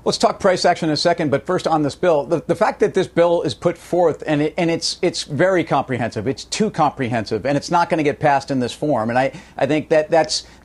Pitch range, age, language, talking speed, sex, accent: 140-170 Hz, 50-69, English, 265 wpm, male, American